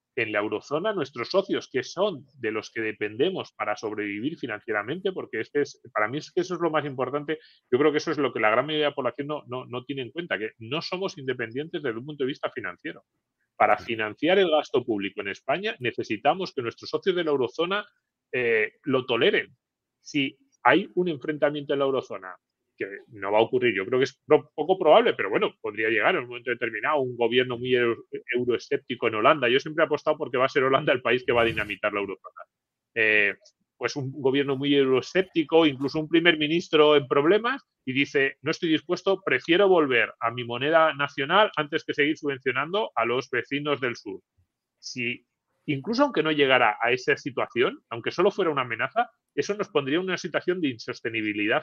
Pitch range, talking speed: 125-170 Hz, 200 wpm